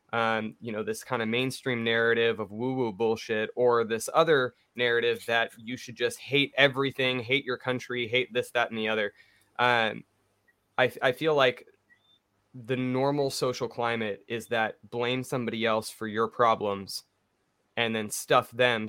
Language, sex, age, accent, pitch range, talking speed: English, male, 20-39, American, 110-130 Hz, 160 wpm